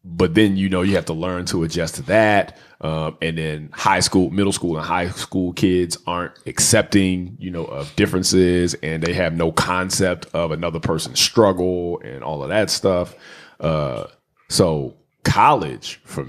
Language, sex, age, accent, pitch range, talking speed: English, male, 30-49, American, 80-95 Hz, 175 wpm